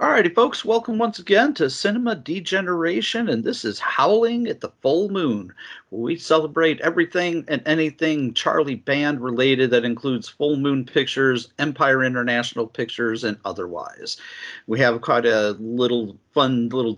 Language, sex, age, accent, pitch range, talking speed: English, male, 50-69, American, 115-150 Hz, 150 wpm